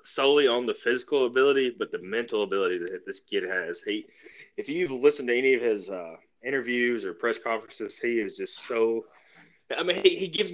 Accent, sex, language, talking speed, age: American, male, English, 200 wpm, 20-39